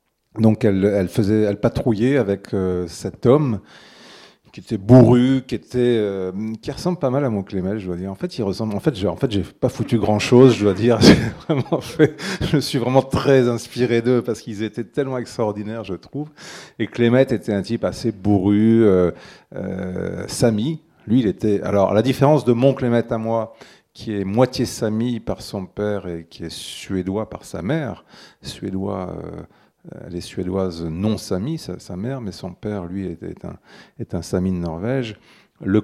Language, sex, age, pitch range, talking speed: French, male, 40-59, 95-125 Hz, 190 wpm